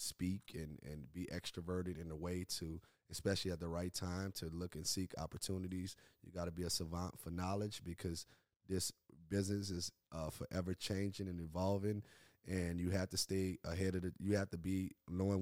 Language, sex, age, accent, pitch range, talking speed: English, male, 30-49, American, 85-100 Hz, 190 wpm